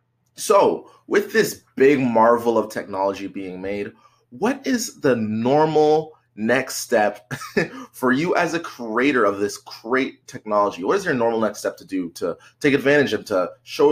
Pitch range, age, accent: 110-145 Hz, 20-39, American